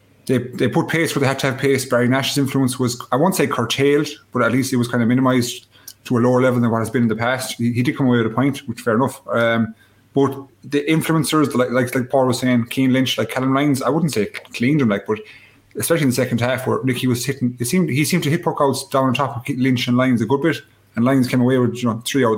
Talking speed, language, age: 285 wpm, English, 30-49